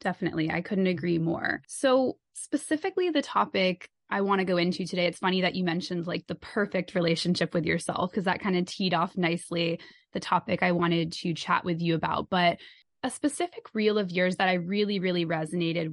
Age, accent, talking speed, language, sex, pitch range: 20-39, American, 200 wpm, English, female, 170-195 Hz